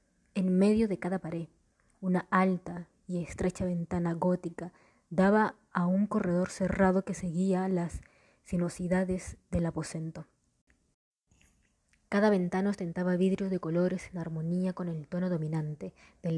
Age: 20-39